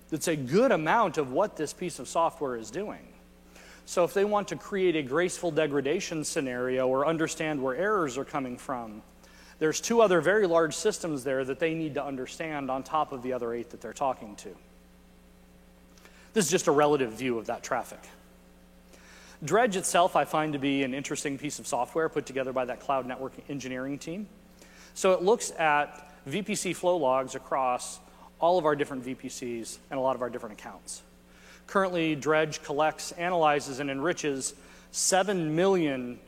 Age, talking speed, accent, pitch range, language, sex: 40-59, 175 wpm, American, 120-160 Hz, English, male